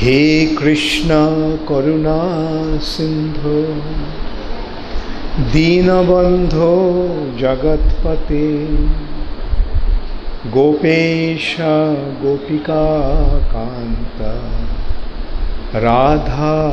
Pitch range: 115-155 Hz